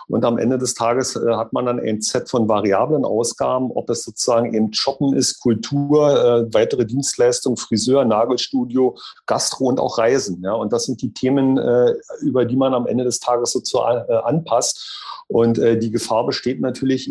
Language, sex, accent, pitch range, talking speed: German, male, German, 115-135 Hz, 185 wpm